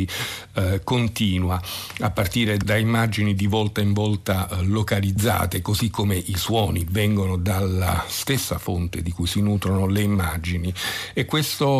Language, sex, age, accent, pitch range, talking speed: Italian, male, 50-69, native, 95-110 Hz, 130 wpm